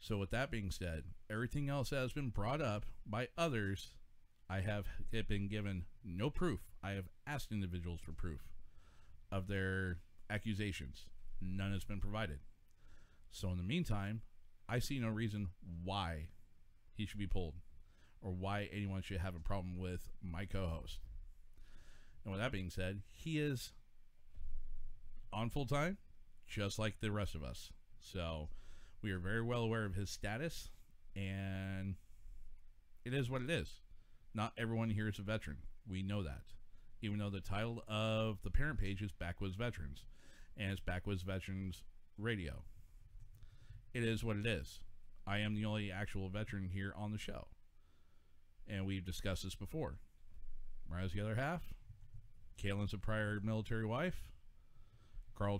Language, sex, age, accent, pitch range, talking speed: English, male, 40-59, American, 90-110 Hz, 150 wpm